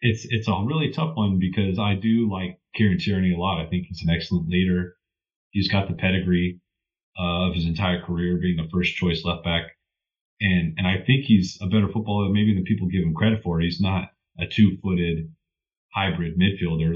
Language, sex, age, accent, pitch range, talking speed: English, male, 30-49, American, 85-100 Hz, 200 wpm